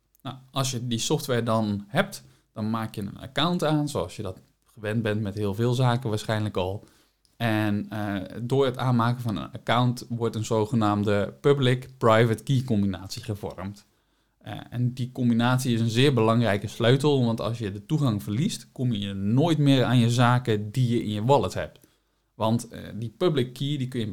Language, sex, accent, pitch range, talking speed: Dutch, male, Dutch, 110-130 Hz, 180 wpm